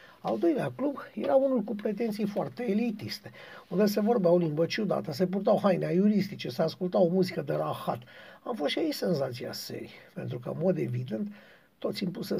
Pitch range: 165-205 Hz